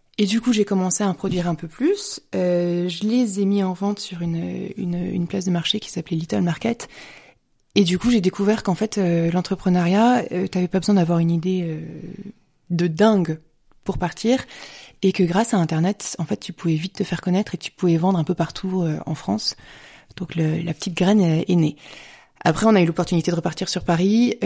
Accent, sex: French, female